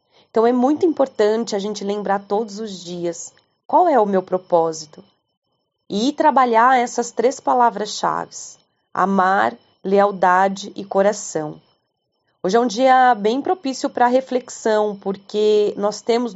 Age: 30-49